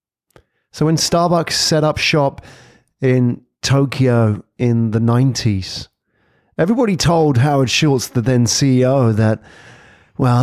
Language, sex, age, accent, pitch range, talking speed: English, male, 30-49, British, 115-140 Hz, 115 wpm